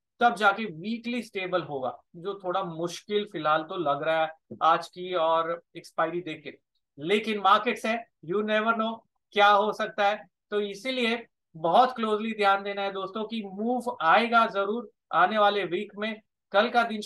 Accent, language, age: Indian, English, 30-49